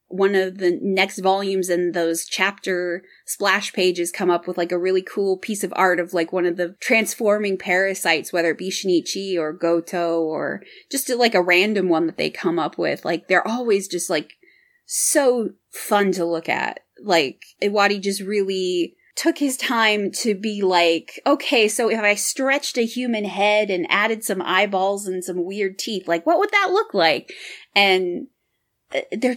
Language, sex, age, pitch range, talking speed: English, female, 20-39, 180-245 Hz, 180 wpm